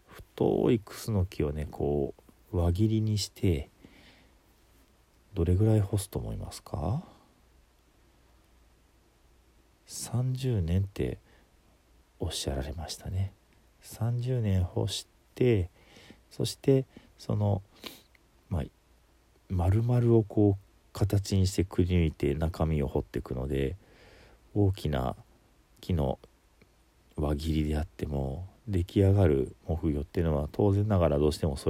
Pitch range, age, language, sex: 75-100 Hz, 40-59, Japanese, male